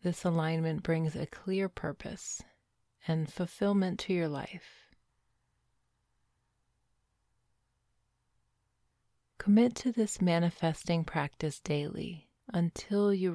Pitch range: 120-175 Hz